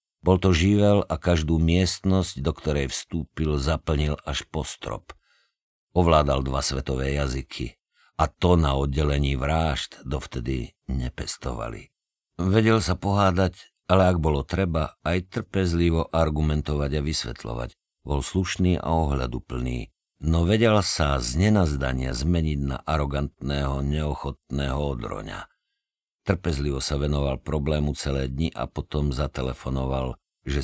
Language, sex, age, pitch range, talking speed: Slovak, male, 50-69, 70-90 Hz, 115 wpm